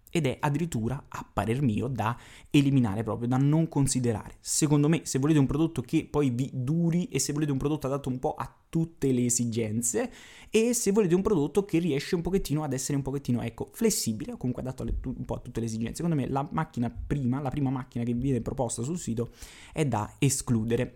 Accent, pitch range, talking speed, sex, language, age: native, 120-150 Hz, 210 wpm, male, Italian, 20-39